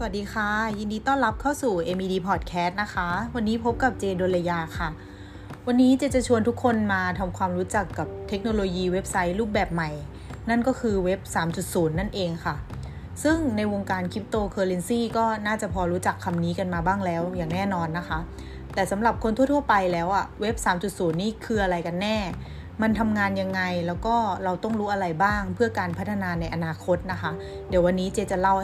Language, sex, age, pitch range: Thai, female, 20-39, 175-220 Hz